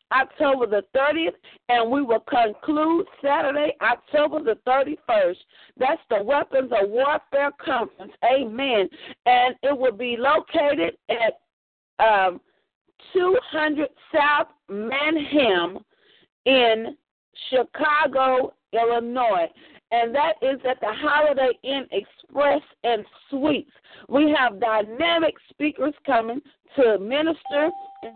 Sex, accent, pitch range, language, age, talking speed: female, American, 240-315 Hz, English, 40-59, 100 wpm